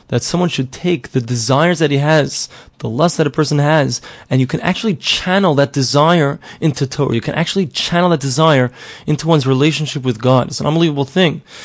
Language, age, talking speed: English, 20-39, 200 wpm